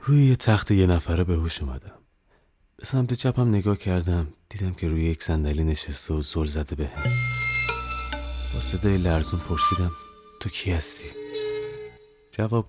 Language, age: Persian, 30-49